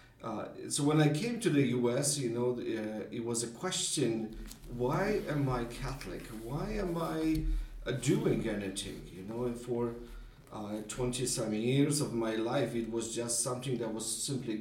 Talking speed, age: 175 wpm, 50-69